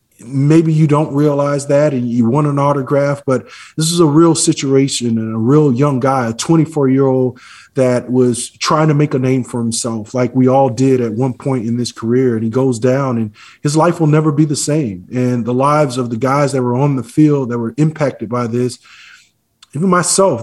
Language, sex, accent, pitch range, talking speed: English, male, American, 130-150 Hz, 215 wpm